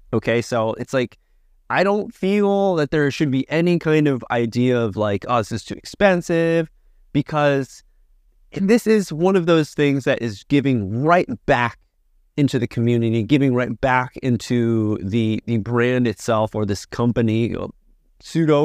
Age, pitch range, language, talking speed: 30-49, 110-150 Hz, English, 160 wpm